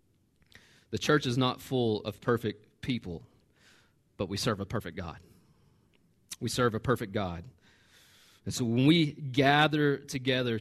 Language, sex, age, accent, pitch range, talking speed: English, male, 30-49, American, 125-160 Hz, 140 wpm